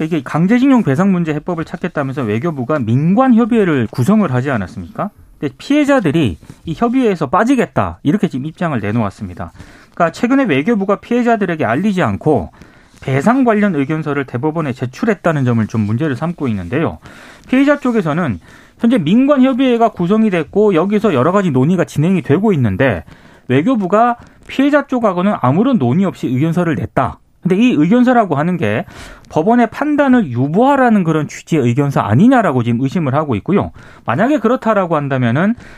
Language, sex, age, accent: Korean, male, 30-49, native